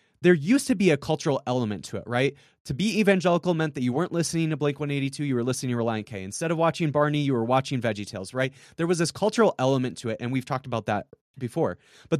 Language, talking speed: English, 245 wpm